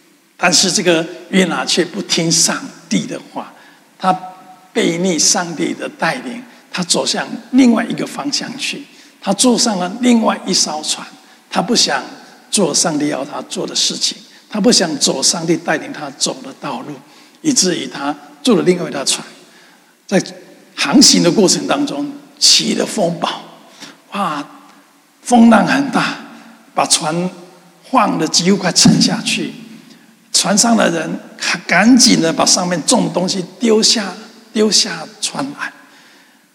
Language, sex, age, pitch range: Chinese, male, 60-79, 185-260 Hz